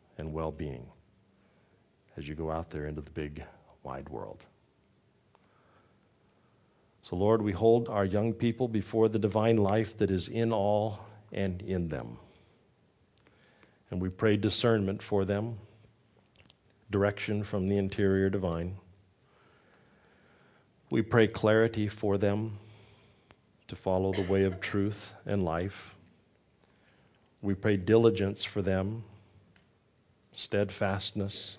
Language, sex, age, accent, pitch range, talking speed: English, male, 50-69, American, 90-105 Hz, 115 wpm